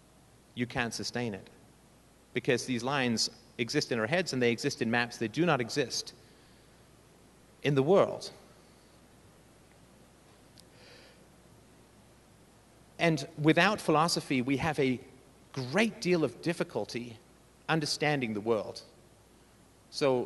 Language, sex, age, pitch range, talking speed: English, male, 40-59, 110-145 Hz, 110 wpm